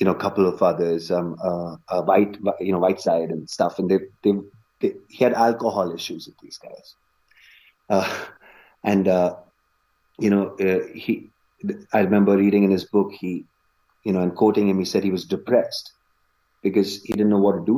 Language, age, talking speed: English, 30-49, 195 wpm